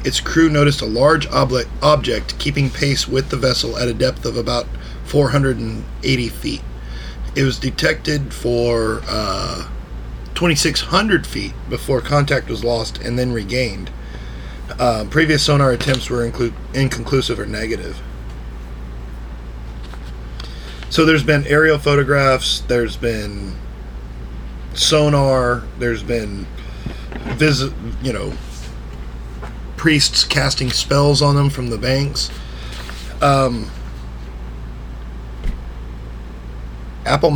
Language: English